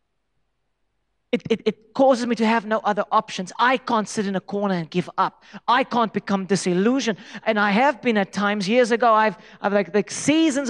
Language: English